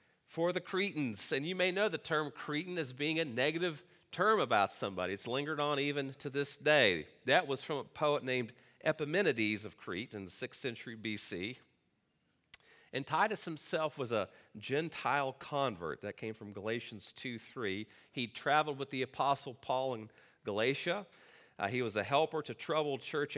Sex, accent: male, American